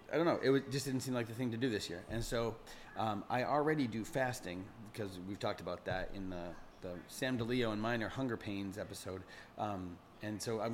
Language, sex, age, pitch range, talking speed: English, male, 30-49, 100-120 Hz, 230 wpm